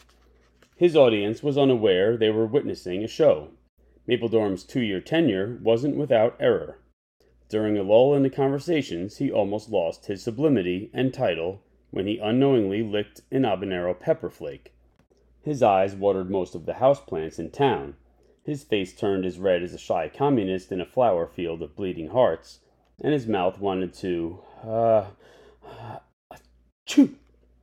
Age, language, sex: 30-49, English, male